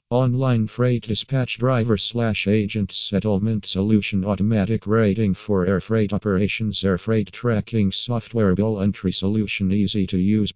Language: English